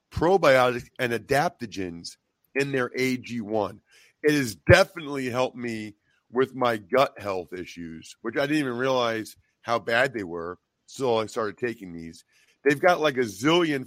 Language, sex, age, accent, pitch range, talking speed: English, male, 40-59, American, 115-145 Hz, 155 wpm